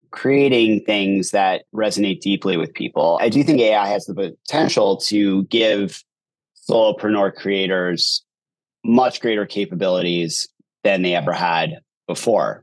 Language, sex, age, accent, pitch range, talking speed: English, male, 30-49, American, 95-115 Hz, 125 wpm